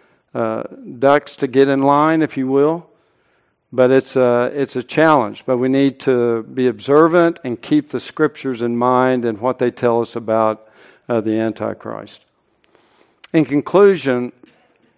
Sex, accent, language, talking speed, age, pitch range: male, American, English, 150 wpm, 60-79, 125-160 Hz